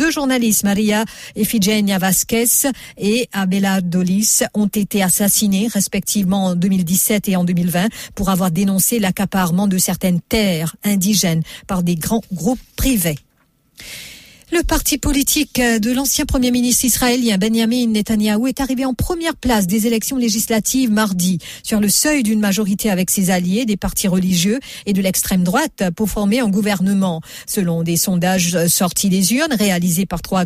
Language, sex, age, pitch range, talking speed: English, female, 50-69, 180-230 Hz, 150 wpm